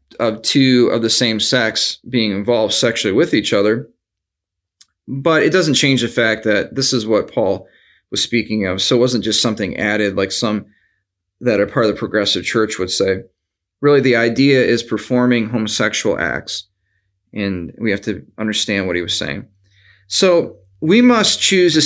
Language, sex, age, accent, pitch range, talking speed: English, male, 30-49, American, 105-130 Hz, 175 wpm